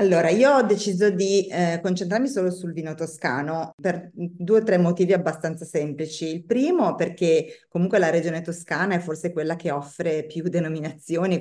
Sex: female